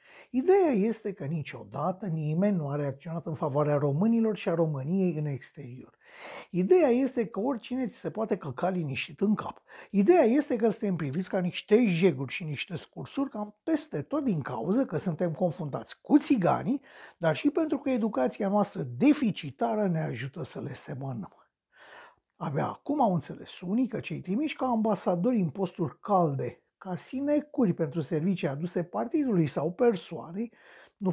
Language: Romanian